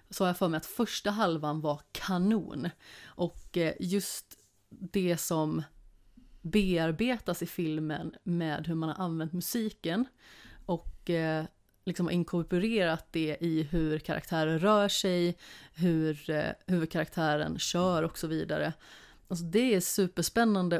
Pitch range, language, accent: 165-205 Hz, Swedish, native